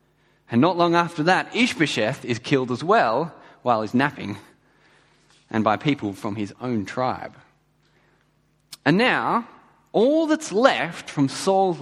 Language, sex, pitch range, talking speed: English, male, 120-185 Hz, 135 wpm